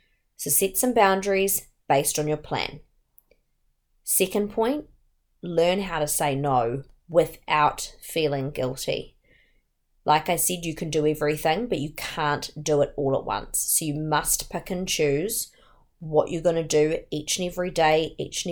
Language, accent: English, Australian